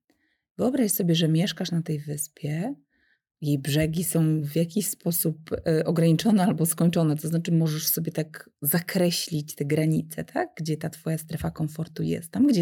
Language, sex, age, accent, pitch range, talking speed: Polish, female, 30-49, native, 155-175 Hz, 150 wpm